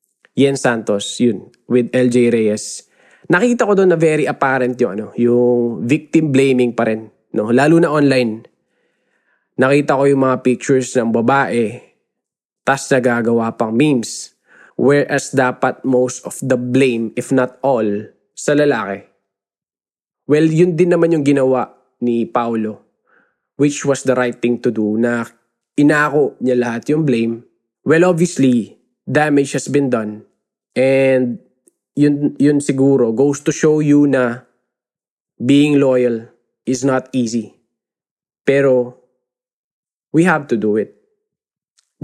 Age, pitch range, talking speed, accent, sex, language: 20-39, 120-145 Hz, 135 wpm, native, male, Filipino